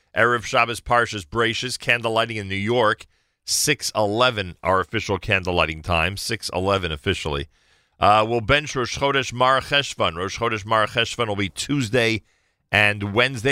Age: 40-59